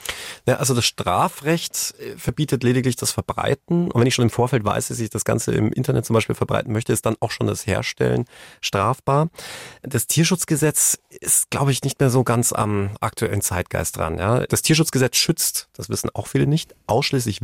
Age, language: 40-59, German